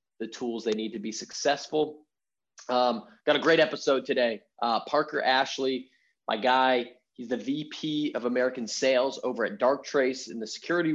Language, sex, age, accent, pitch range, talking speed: English, male, 20-39, American, 120-145 Hz, 170 wpm